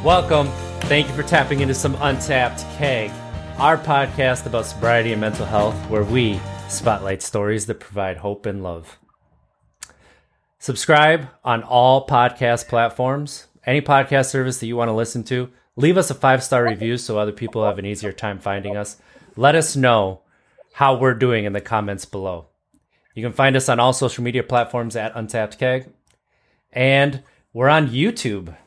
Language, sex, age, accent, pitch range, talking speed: English, male, 30-49, American, 105-135 Hz, 165 wpm